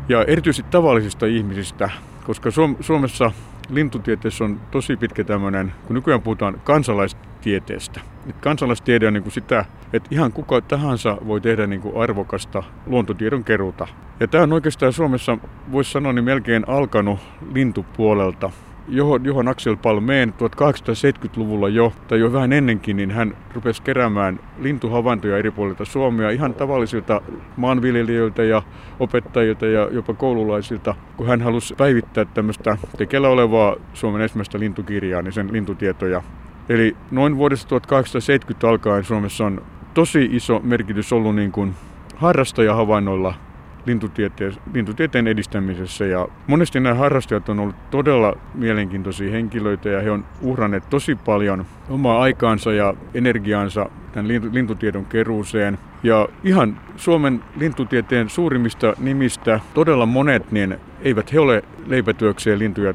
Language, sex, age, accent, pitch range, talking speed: Finnish, male, 60-79, native, 105-125 Hz, 125 wpm